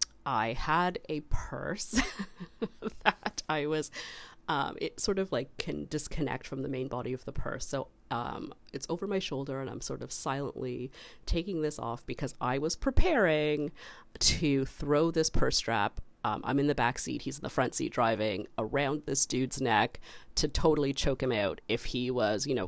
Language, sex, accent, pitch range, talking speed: English, female, American, 130-170 Hz, 185 wpm